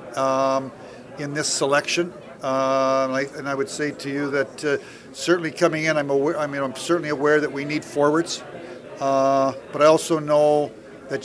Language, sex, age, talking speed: English, male, 50-69, 185 wpm